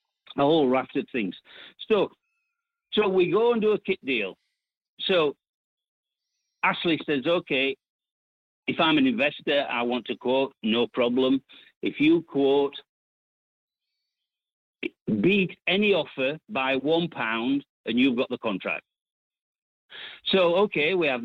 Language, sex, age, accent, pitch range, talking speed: English, male, 60-79, British, 125-200 Hz, 130 wpm